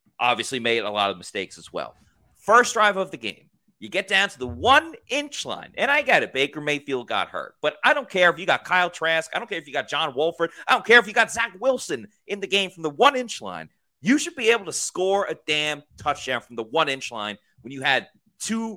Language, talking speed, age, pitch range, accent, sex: English, 255 wpm, 30-49, 145-205 Hz, American, male